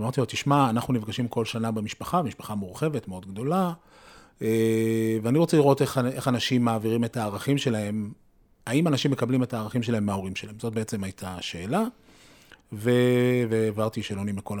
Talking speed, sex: 150 wpm, male